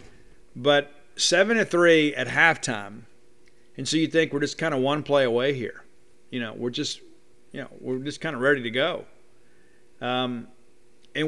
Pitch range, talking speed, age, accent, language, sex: 125-155 Hz, 175 wpm, 50-69, American, English, male